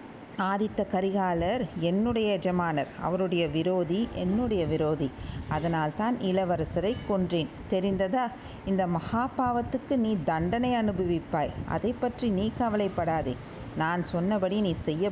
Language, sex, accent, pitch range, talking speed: Tamil, female, native, 175-215 Hz, 105 wpm